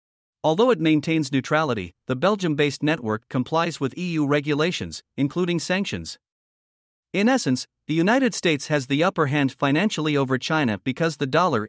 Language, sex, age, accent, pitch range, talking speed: English, male, 50-69, American, 130-170 Hz, 145 wpm